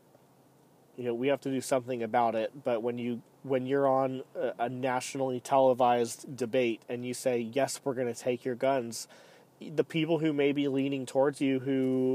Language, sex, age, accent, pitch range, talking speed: English, male, 30-49, American, 125-140 Hz, 195 wpm